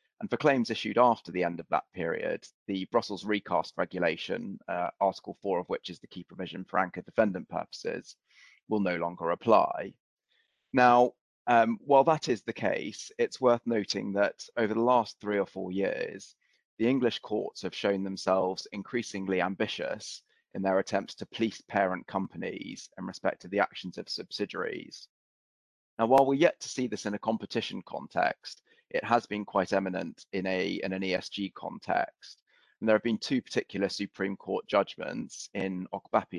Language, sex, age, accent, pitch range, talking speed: English, male, 20-39, British, 95-110 Hz, 170 wpm